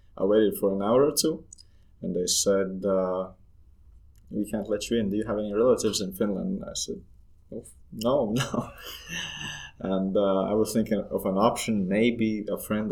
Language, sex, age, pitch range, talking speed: Finnish, male, 20-39, 95-110 Hz, 175 wpm